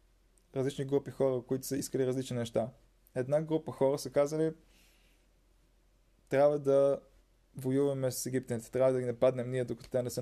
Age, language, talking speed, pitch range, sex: 20-39, Bulgarian, 160 wpm, 125-145 Hz, male